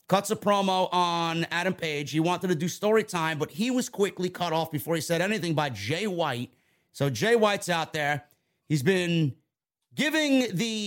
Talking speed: 190 wpm